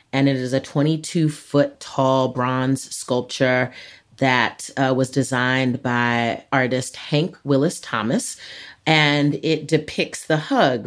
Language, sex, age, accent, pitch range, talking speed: English, female, 30-49, American, 125-150 Hz, 115 wpm